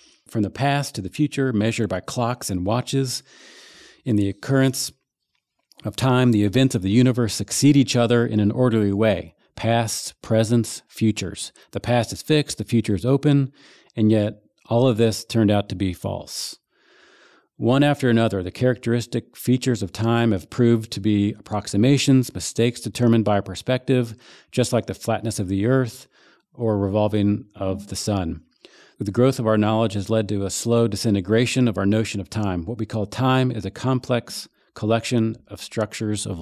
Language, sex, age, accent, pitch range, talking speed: English, male, 40-59, American, 100-120 Hz, 175 wpm